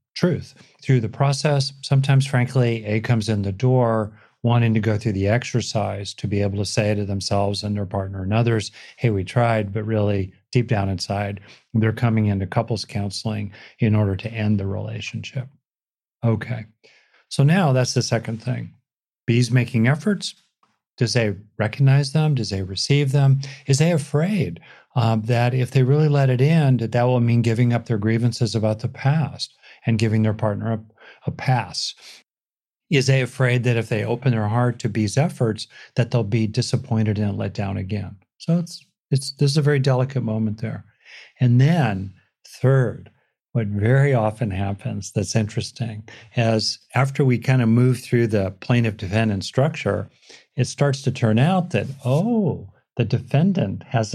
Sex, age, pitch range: male, 40-59, 110-130 Hz